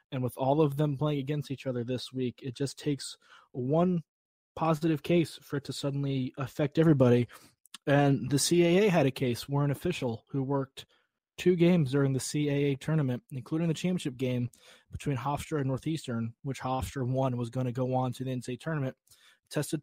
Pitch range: 130-150 Hz